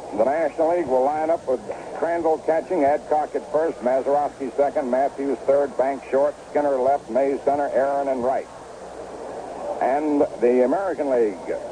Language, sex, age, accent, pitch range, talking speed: English, male, 60-79, American, 130-170 Hz, 150 wpm